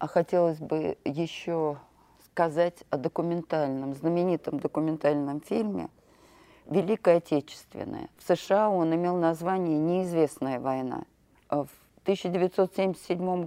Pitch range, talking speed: 155-195 Hz, 95 wpm